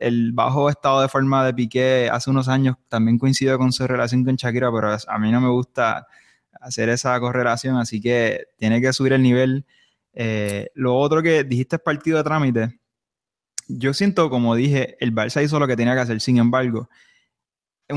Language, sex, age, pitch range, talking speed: Spanish, male, 20-39, 120-145 Hz, 190 wpm